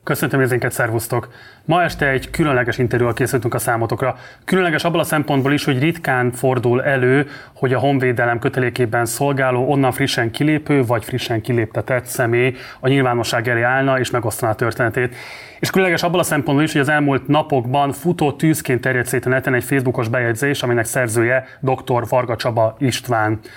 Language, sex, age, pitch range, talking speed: Hungarian, male, 30-49, 120-135 Hz, 165 wpm